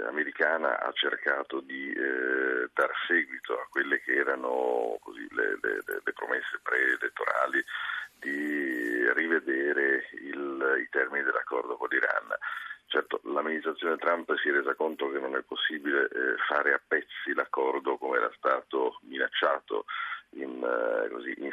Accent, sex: native, male